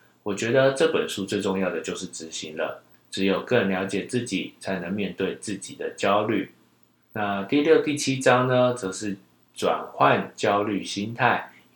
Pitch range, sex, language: 100-135 Hz, male, Chinese